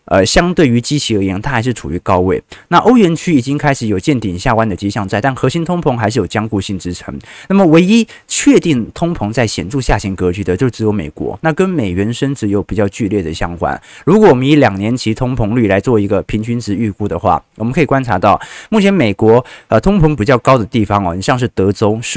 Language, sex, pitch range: Chinese, male, 105-150 Hz